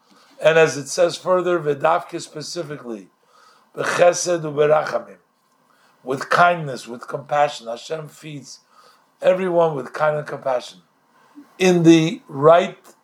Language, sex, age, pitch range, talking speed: English, male, 50-69, 150-200 Hz, 105 wpm